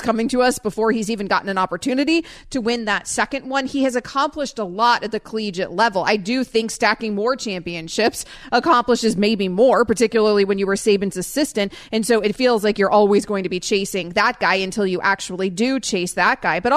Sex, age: female, 30-49